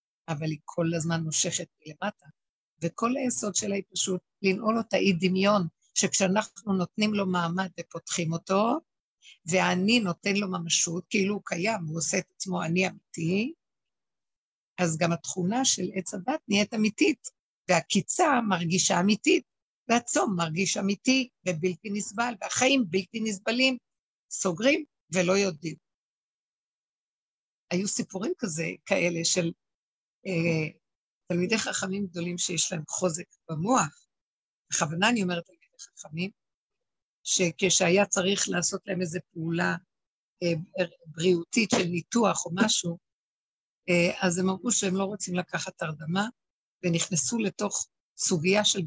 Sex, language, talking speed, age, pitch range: female, Hebrew, 120 wpm, 60-79, 175-205 Hz